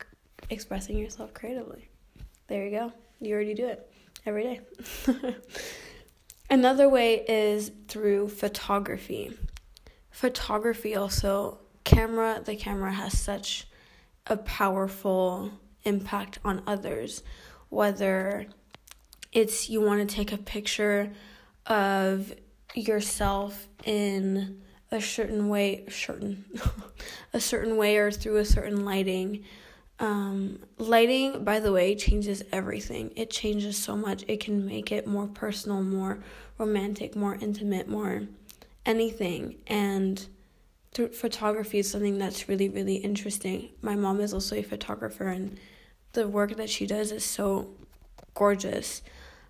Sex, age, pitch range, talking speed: female, 10-29, 195-220 Hz, 120 wpm